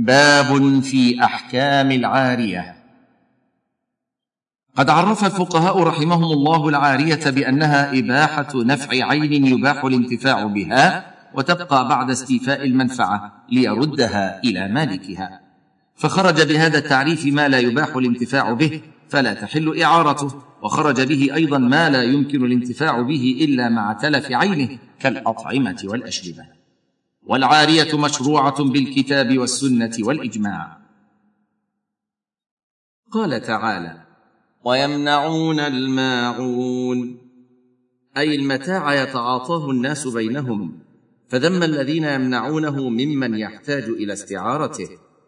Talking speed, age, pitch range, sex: 95 wpm, 50-69, 125-150 Hz, male